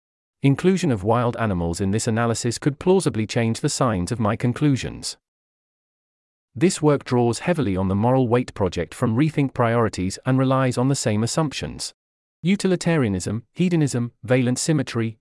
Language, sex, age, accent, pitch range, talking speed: English, male, 40-59, British, 110-140 Hz, 145 wpm